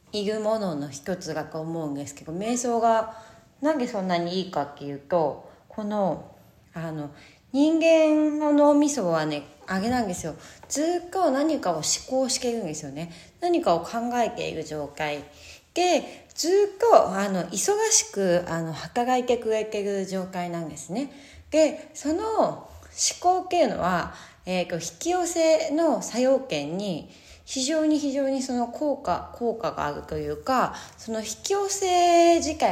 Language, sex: Japanese, female